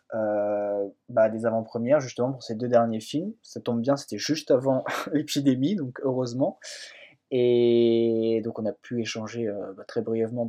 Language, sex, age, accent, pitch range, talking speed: French, male, 20-39, French, 115-130 Hz, 160 wpm